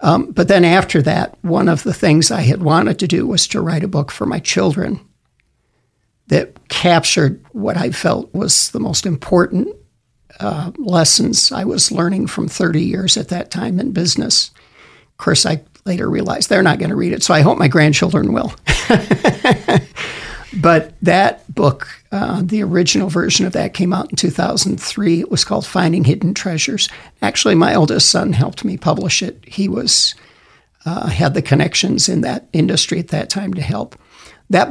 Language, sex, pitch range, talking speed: English, male, 160-190 Hz, 180 wpm